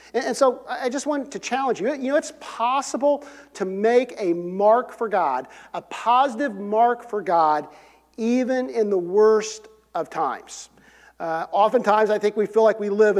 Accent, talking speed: American, 175 wpm